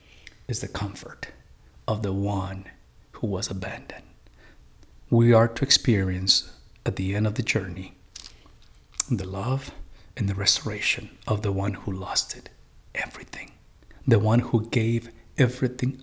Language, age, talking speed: English, 50-69, 135 wpm